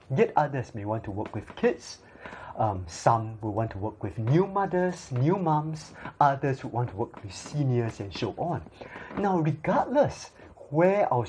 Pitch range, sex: 115-155 Hz, male